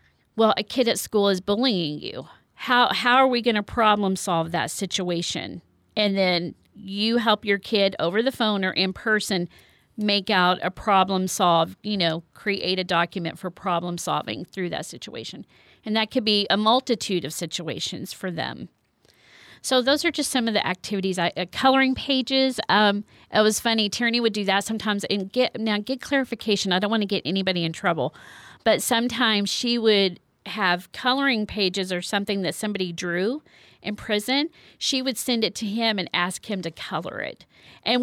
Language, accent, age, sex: English, American, 40-59, female